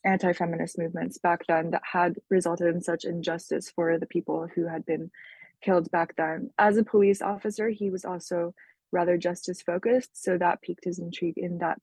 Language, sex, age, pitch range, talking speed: English, female, 20-39, 175-210 Hz, 185 wpm